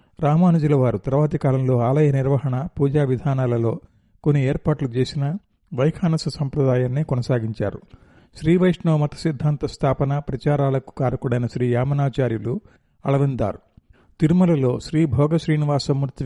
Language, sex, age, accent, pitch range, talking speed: Telugu, male, 50-69, native, 125-150 Hz, 100 wpm